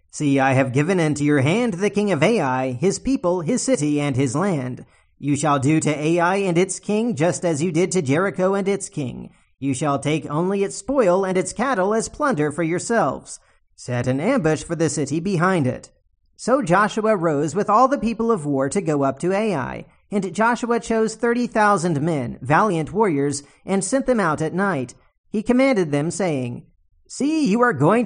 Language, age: English, 40-59